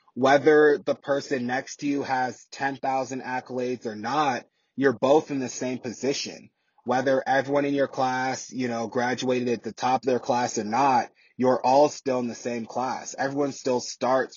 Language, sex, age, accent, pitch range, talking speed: English, male, 20-39, American, 120-135 Hz, 180 wpm